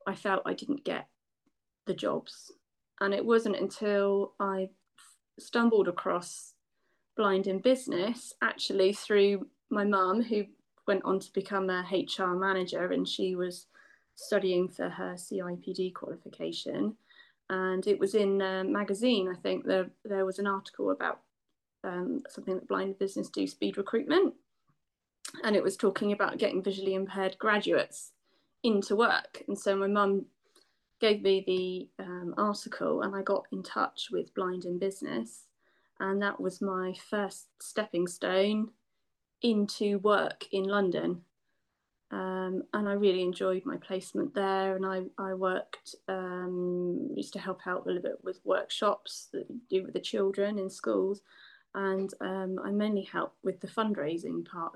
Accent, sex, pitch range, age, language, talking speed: British, female, 185-205 Hz, 20-39, English, 150 wpm